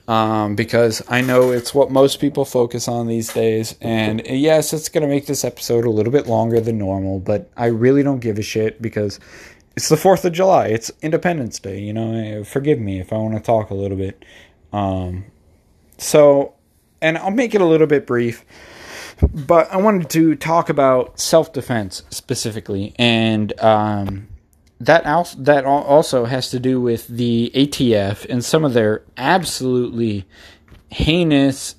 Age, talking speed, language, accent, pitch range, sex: 20-39, 170 wpm, English, American, 105-135 Hz, male